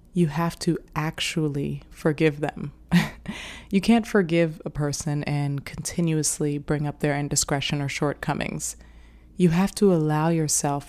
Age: 20-39